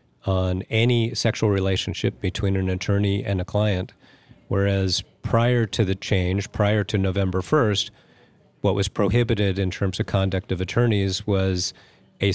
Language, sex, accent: English, male, American